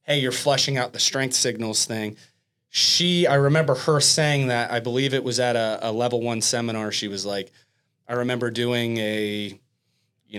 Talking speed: 185 wpm